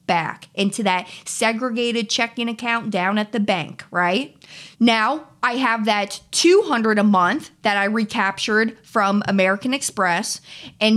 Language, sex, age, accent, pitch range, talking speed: English, female, 30-49, American, 190-235 Hz, 135 wpm